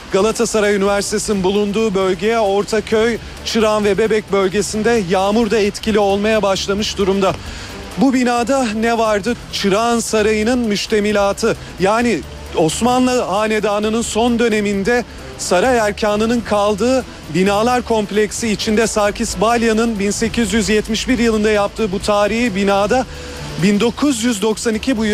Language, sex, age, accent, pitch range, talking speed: Turkish, male, 40-59, native, 205-230 Hz, 100 wpm